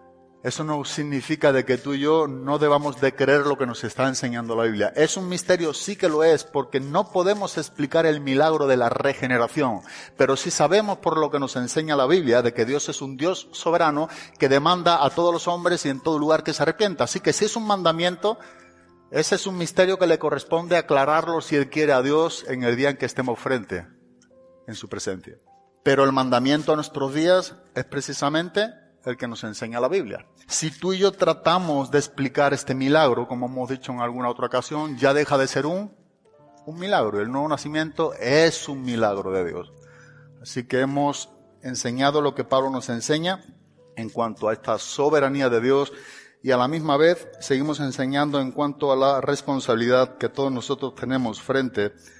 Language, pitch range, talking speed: Spanish, 125-160 Hz, 200 wpm